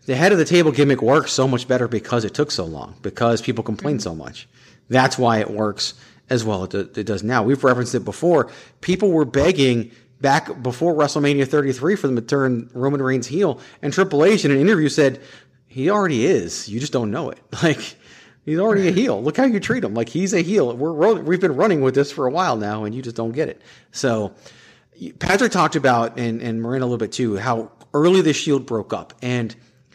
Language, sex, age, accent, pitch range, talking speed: English, male, 40-59, American, 115-145 Hz, 220 wpm